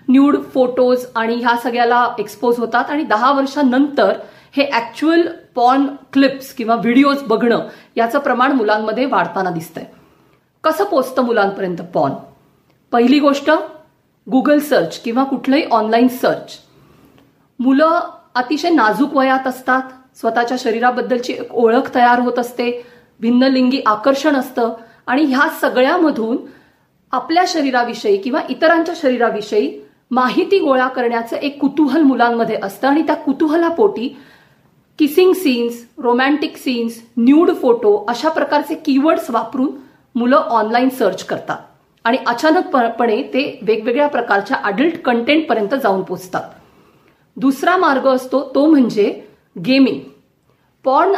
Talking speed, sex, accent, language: 115 wpm, female, native, Marathi